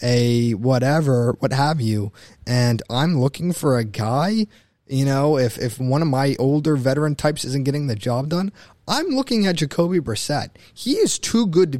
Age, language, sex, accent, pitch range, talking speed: 20-39, English, male, American, 130-185 Hz, 185 wpm